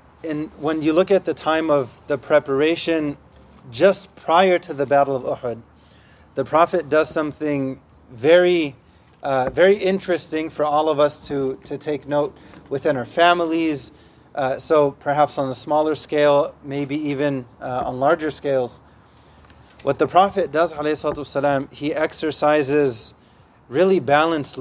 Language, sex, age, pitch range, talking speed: English, male, 30-49, 140-165 Hz, 140 wpm